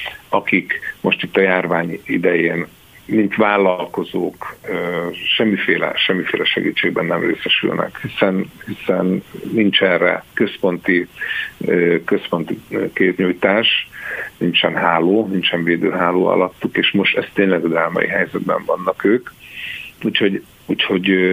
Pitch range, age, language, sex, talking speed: 90-110 Hz, 50-69, Hungarian, male, 100 wpm